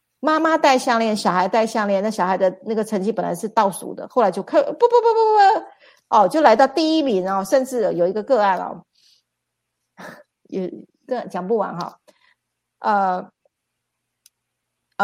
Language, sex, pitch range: Chinese, female, 190-240 Hz